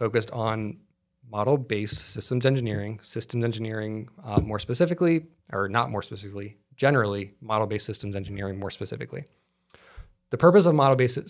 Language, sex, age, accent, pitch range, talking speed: English, male, 20-39, American, 105-135 Hz, 125 wpm